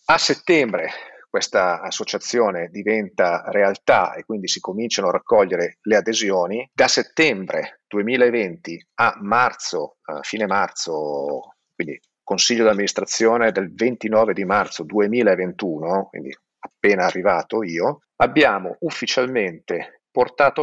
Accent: native